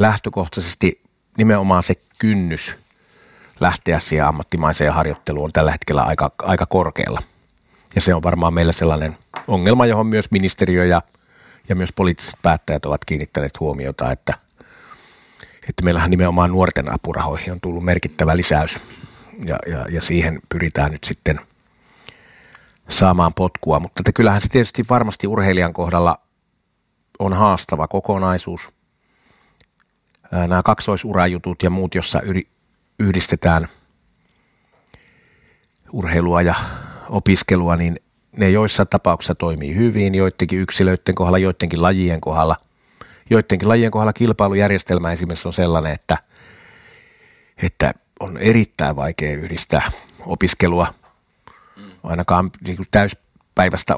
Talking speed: 110 wpm